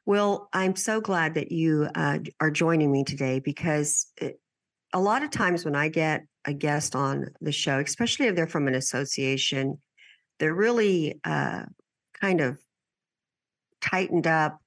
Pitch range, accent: 140-175 Hz, American